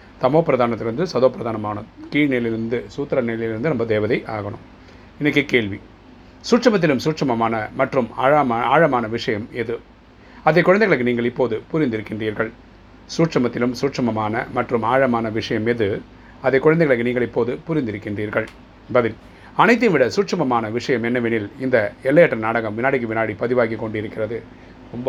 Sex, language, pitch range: male, Tamil, 115-140 Hz